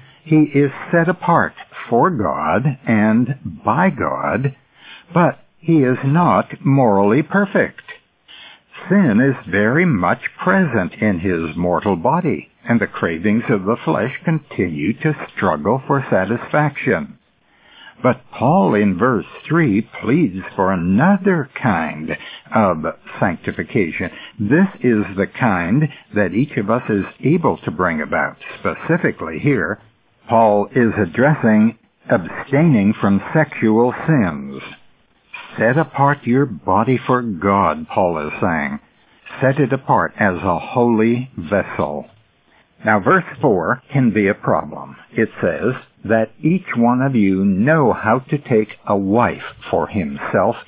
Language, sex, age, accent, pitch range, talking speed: English, male, 60-79, American, 100-140 Hz, 125 wpm